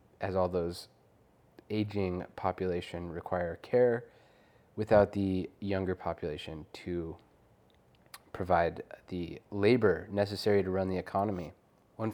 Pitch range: 90-105 Hz